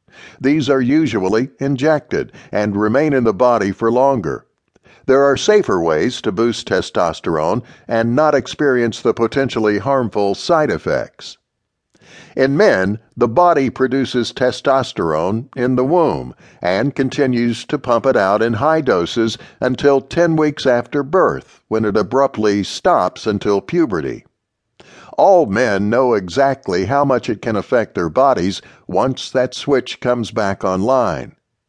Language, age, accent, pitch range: English, 60-79, American, 110-135 Hz